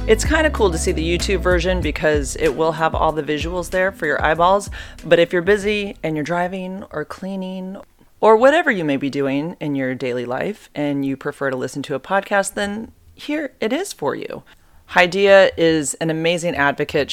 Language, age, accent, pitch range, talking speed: English, 30-49, American, 140-175 Hz, 205 wpm